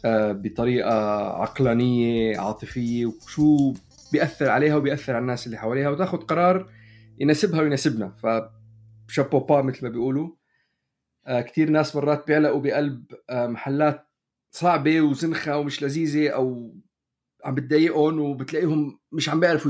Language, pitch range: Arabic, 125-175 Hz